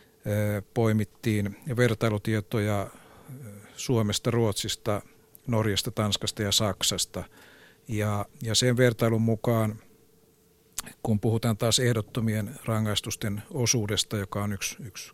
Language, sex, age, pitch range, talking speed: Finnish, male, 60-79, 100-115 Hz, 90 wpm